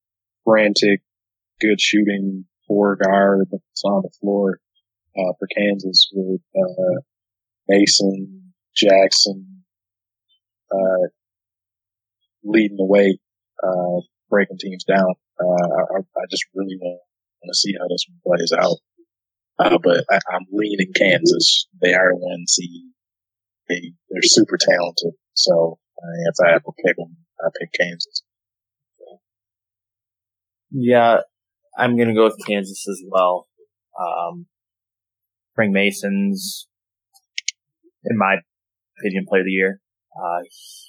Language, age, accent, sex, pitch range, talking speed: English, 20-39, American, male, 95-105 Hz, 120 wpm